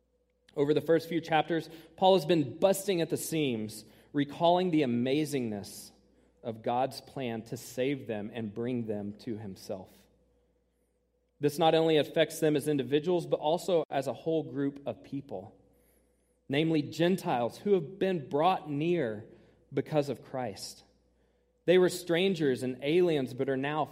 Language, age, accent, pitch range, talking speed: English, 40-59, American, 125-165 Hz, 150 wpm